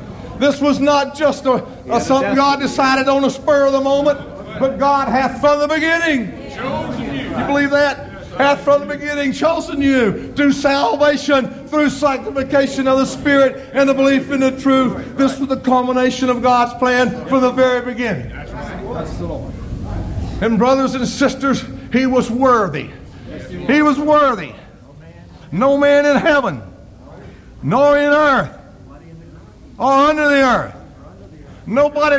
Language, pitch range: English, 260-310 Hz